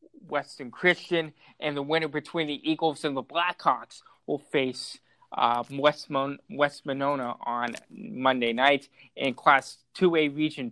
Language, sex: English, male